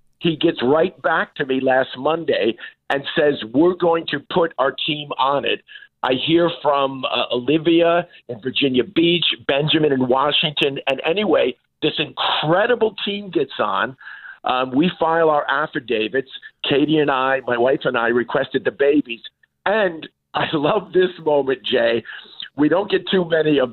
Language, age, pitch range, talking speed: English, 50-69, 130-170 Hz, 160 wpm